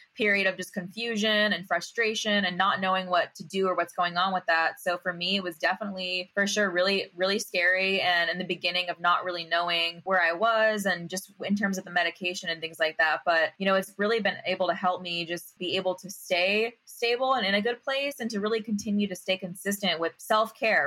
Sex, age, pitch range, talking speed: female, 20-39, 180-210 Hz, 235 wpm